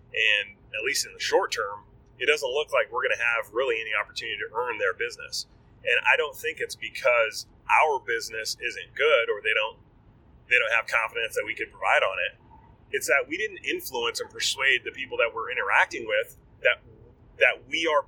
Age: 30-49